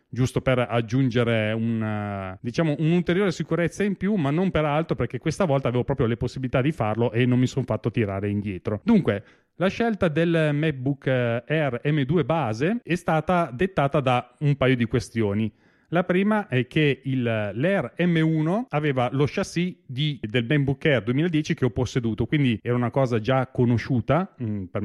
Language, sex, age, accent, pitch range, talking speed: Italian, male, 30-49, native, 115-155 Hz, 165 wpm